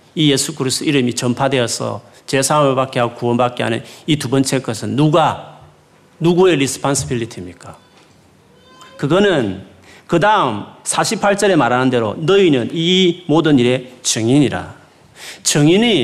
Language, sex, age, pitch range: Korean, male, 40-59, 125-195 Hz